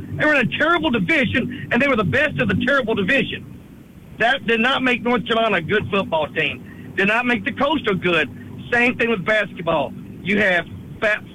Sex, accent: male, American